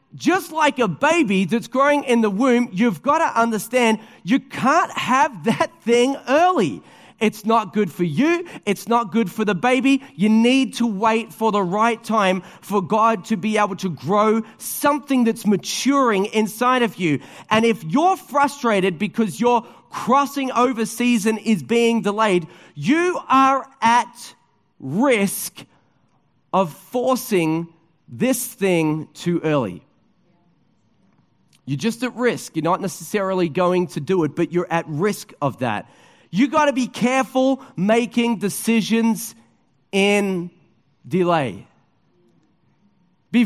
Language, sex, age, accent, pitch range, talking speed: English, male, 30-49, Australian, 185-240 Hz, 140 wpm